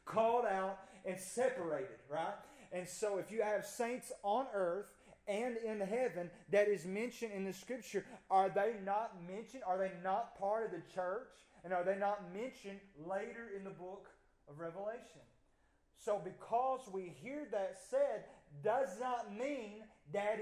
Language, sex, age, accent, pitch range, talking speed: English, male, 30-49, American, 180-225 Hz, 160 wpm